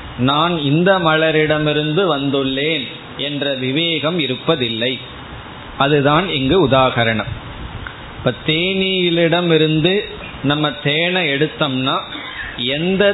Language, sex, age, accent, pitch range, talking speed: Tamil, male, 30-49, native, 130-170 Hz, 75 wpm